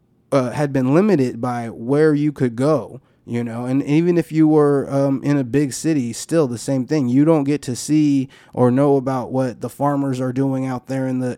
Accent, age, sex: American, 20-39, male